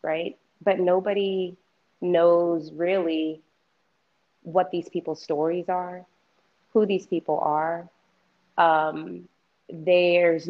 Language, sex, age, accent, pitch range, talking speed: English, female, 20-39, American, 155-175 Hz, 90 wpm